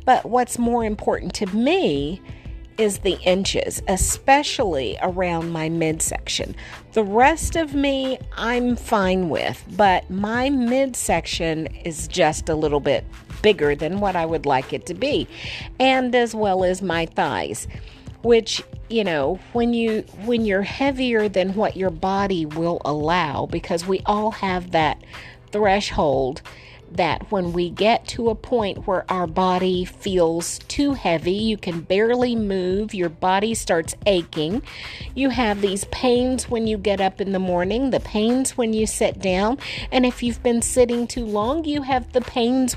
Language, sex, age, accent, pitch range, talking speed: English, female, 50-69, American, 185-250 Hz, 160 wpm